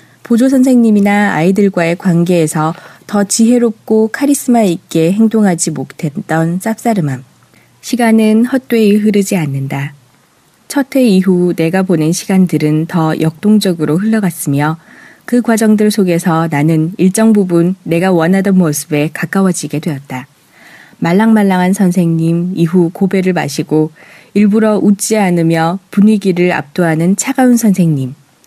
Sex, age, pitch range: female, 20-39, 160-210 Hz